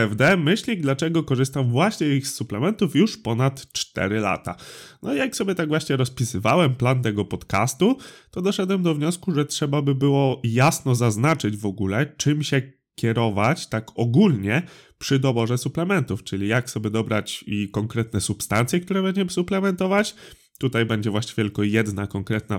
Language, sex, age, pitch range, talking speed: Polish, male, 20-39, 115-160 Hz, 150 wpm